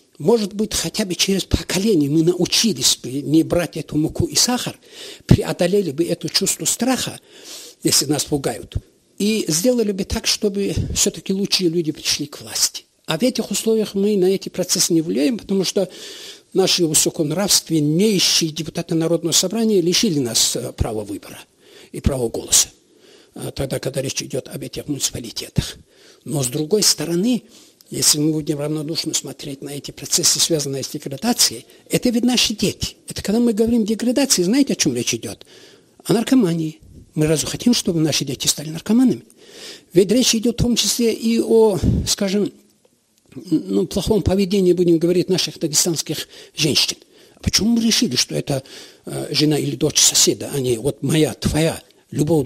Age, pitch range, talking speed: 60-79, 155-225 Hz, 155 wpm